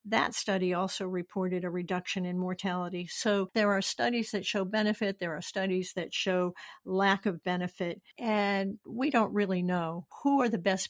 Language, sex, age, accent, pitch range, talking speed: English, female, 50-69, American, 180-205 Hz, 175 wpm